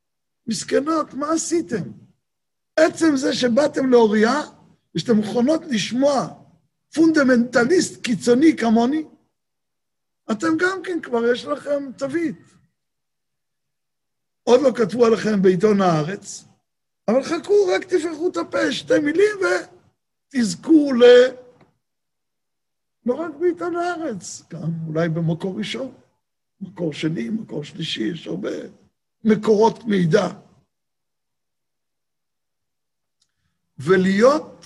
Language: Hebrew